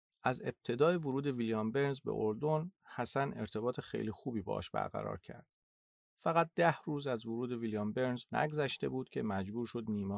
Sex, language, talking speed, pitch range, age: male, Persian, 160 wpm, 105-130 Hz, 40-59